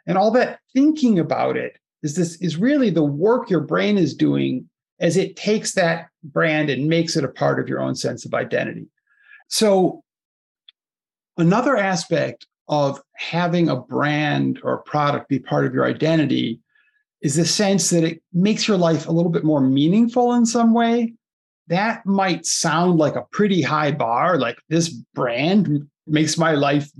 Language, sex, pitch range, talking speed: English, male, 145-220 Hz, 170 wpm